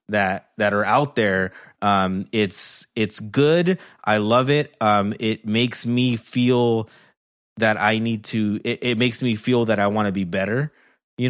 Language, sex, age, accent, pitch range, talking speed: English, male, 20-39, American, 105-120 Hz, 175 wpm